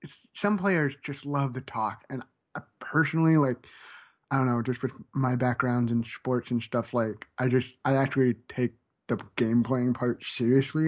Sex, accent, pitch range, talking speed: male, American, 120-140 Hz, 175 wpm